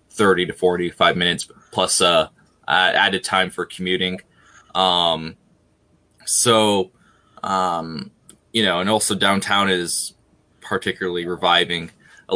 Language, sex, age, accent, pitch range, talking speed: English, male, 20-39, American, 90-115 Hz, 105 wpm